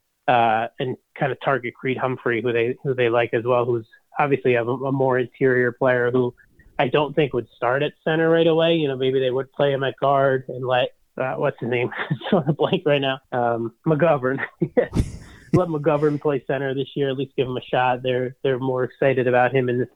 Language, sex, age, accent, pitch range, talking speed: English, male, 30-49, American, 120-140 Hz, 215 wpm